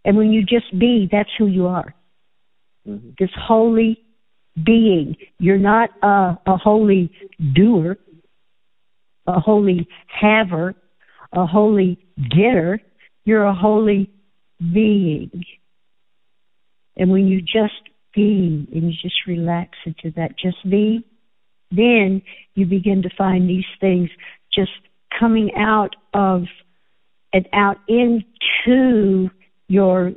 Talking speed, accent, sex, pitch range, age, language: 110 wpm, American, female, 185-215 Hz, 60-79, English